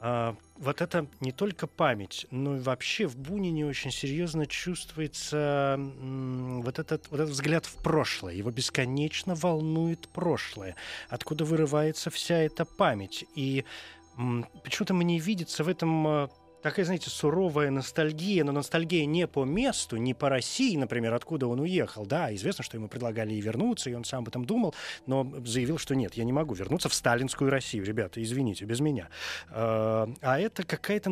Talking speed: 155 wpm